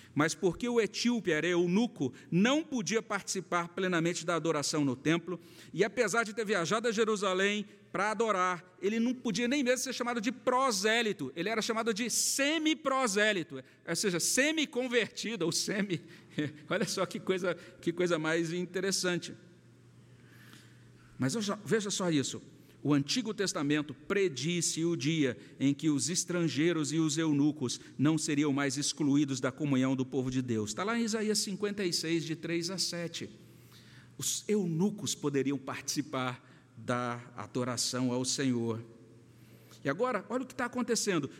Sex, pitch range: male, 145-225 Hz